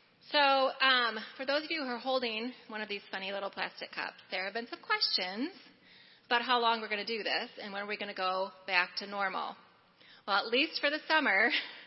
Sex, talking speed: female, 225 wpm